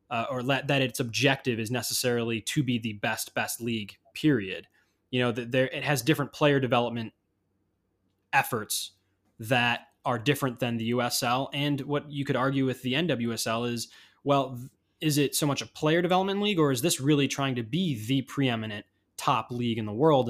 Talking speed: 185 wpm